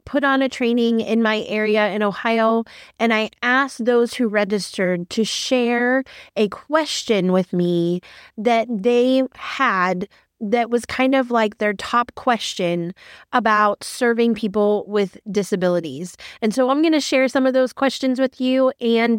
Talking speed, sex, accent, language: 155 wpm, female, American, English